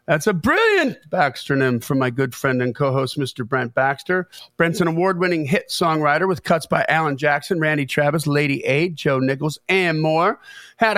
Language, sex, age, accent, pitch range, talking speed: English, male, 50-69, American, 140-180 Hz, 180 wpm